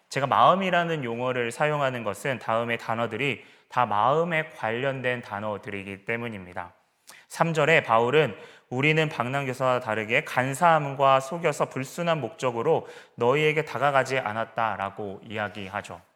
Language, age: Korean, 30-49